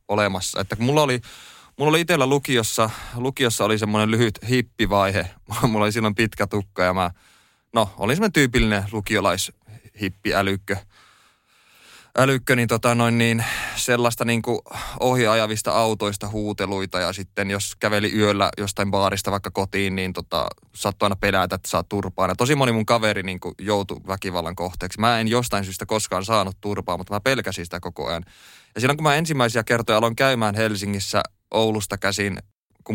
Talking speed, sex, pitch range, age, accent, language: 155 wpm, male, 100-115 Hz, 20-39, native, Finnish